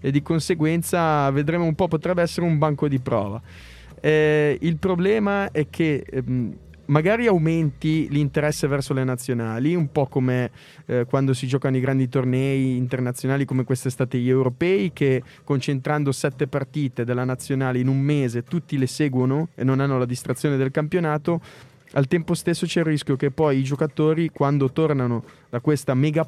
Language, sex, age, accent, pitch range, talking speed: Italian, male, 20-39, native, 130-160 Hz, 165 wpm